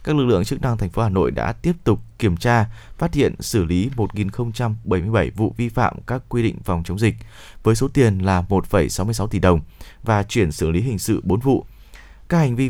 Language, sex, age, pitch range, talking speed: Vietnamese, male, 20-39, 95-125 Hz, 215 wpm